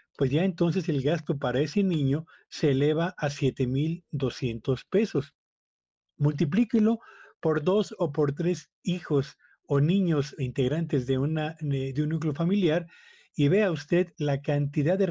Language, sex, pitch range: Spanish, male, 135-170 Hz